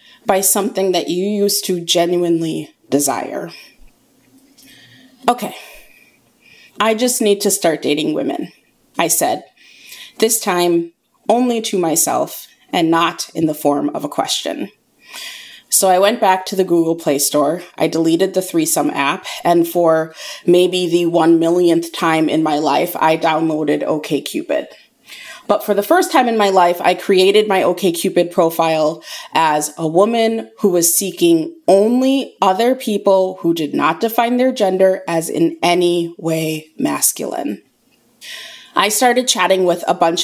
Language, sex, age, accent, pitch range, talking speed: English, female, 20-39, American, 170-230 Hz, 145 wpm